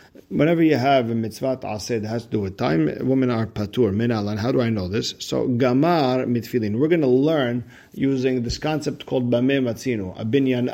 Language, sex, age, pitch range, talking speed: English, male, 40-59, 115-135 Hz, 190 wpm